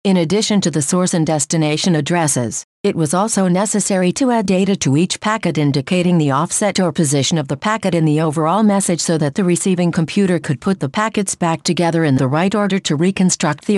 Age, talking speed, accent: 50-69, 210 wpm, American